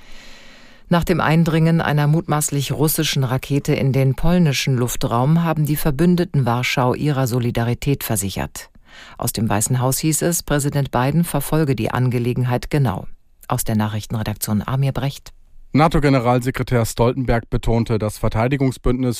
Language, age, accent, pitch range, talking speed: German, 40-59, German, 110-140 Hz, 125 wpm